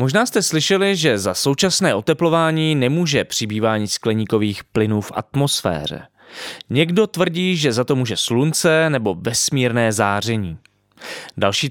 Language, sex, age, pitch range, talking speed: Czech, male, 20-39, 105-145 Hz, 125 wpm